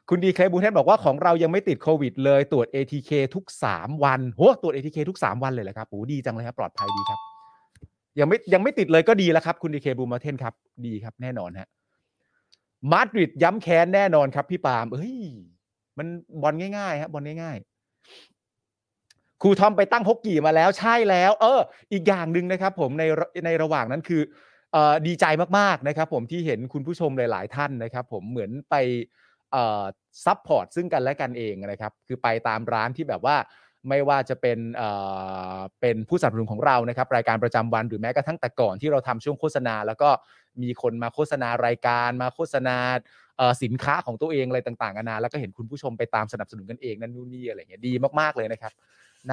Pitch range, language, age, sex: 120-165 Hz, Thai, 30-49, male